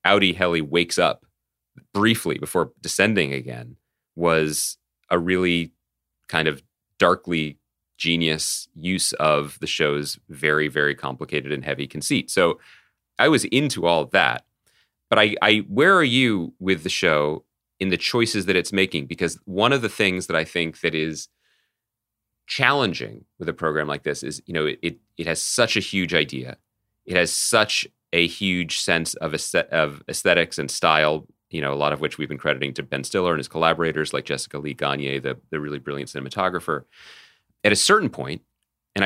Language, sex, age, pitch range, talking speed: English, male, 30-49, 75-95 Hz, 180 wpm